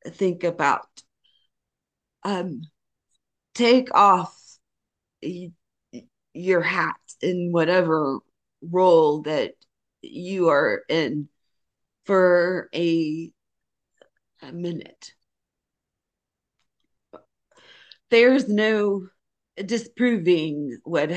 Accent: American